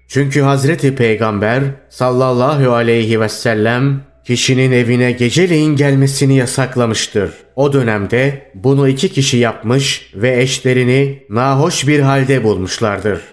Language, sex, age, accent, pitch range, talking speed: Turkish, male, 30-49, native, 115-135 Hz, 110 wpm